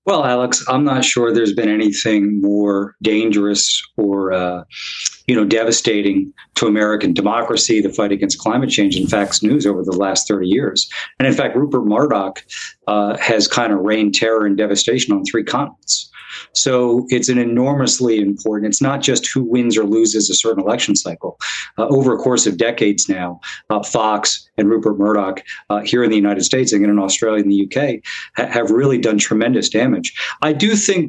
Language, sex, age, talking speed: English, male, 40-59, 185 wpm